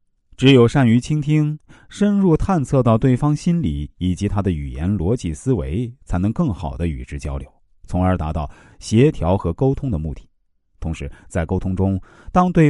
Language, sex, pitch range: Chinese, male, 80-125 Hz